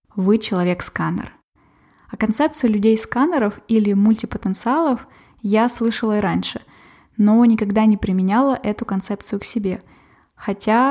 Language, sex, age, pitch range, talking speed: Russian, female, 20-39, 200-235 Hz, 120 wpm